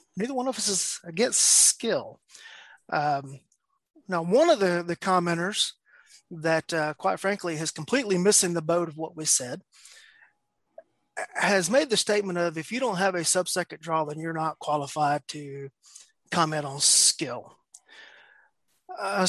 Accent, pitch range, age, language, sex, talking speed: American, 155-190 Hz, 30-49, English, male, 150 wpm